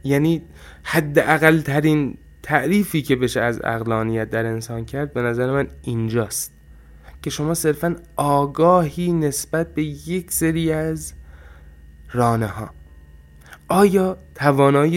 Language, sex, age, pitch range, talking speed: Persian, male, 20-39, 115-150 Hz, 110 wpm